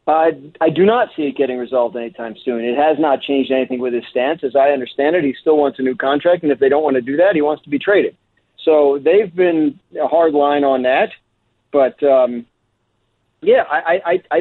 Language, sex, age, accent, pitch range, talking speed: English, male, 40-59, American, 130-175 Hz, 230 wpm